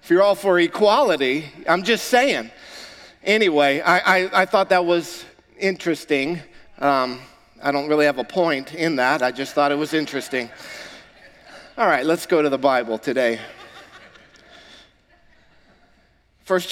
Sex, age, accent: male, 50-69, American